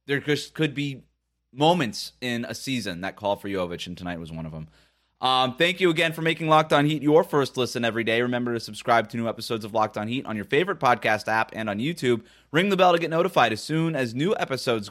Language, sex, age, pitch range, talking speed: English, male, 30-49, 115-155 Hz, 240 wpm